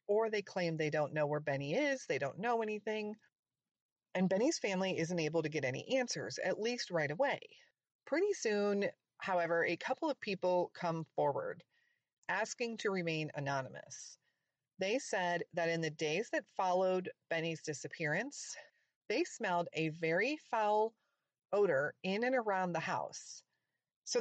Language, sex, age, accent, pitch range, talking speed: English, female, 40-59, American, 160-225 Hz, 150 wpm